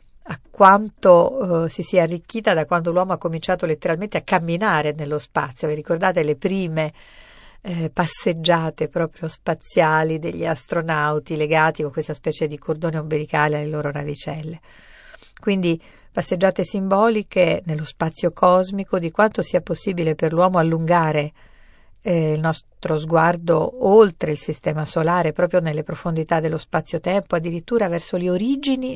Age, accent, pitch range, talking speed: 50-69, native, 155-190 Hz, 135 wpm